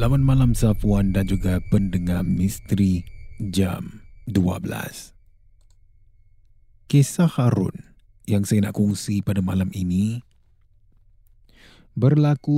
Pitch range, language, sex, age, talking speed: 95-120 Hz, Malay, male, 30-49, 90 wpm